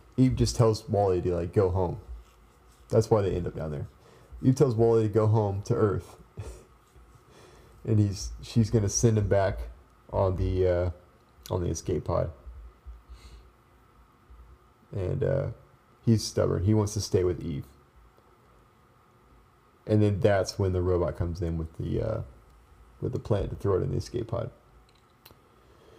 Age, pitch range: 30-49, 95-120 Hz